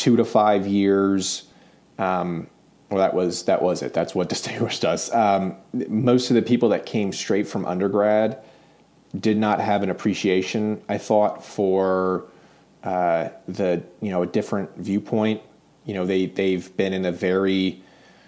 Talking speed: 160 wpm